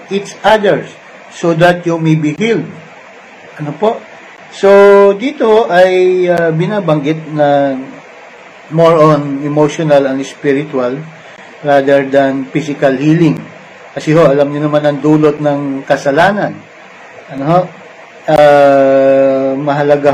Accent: Filipino